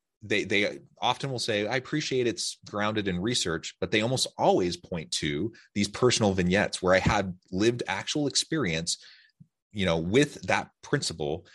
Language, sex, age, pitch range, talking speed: English, male, 30-49, 85-110 Hz, 160 wpm